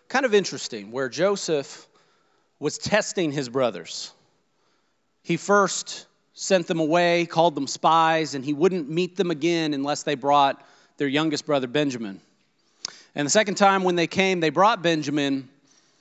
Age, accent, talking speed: 40-59, American, 150 wpm